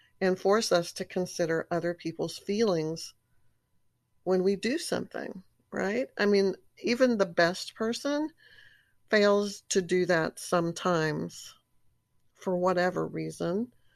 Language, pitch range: English, 160-200 Hz